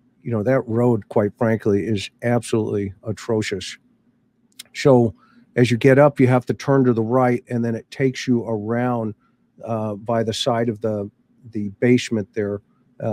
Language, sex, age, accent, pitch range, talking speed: English, male, 50-69, American, 115-130 Hz, 170 wpm